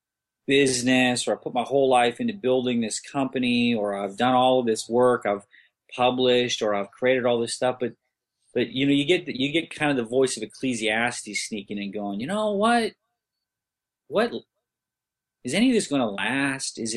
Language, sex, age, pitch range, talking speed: English, male, 30-49, 110-140 Hz, 200 wpm